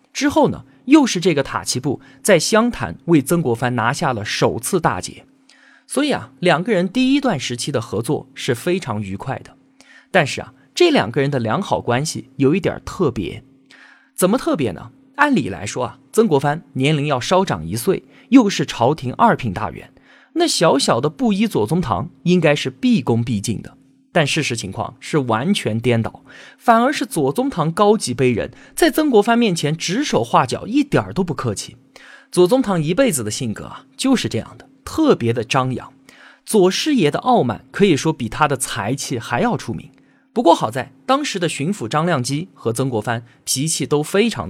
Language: Chinese